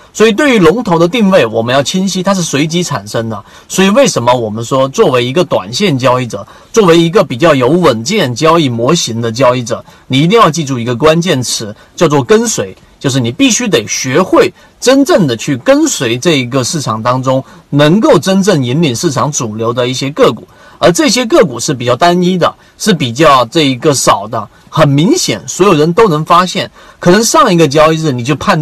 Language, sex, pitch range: Chinese, male, 125-175 Hz